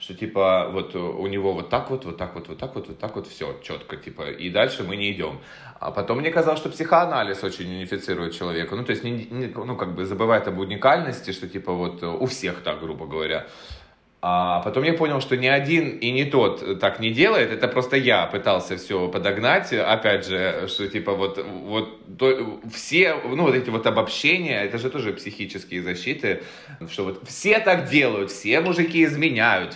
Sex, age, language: male, 20-39, Russian